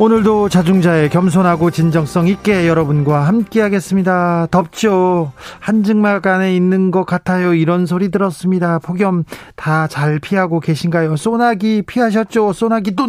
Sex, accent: male, native